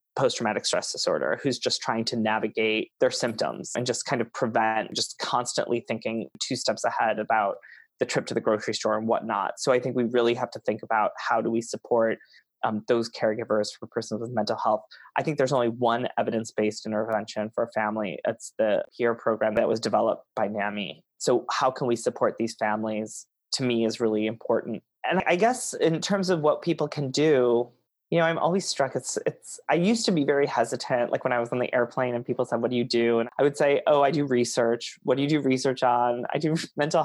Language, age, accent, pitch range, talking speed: English, 20-39, American, 115-145 Hz, 220 wpm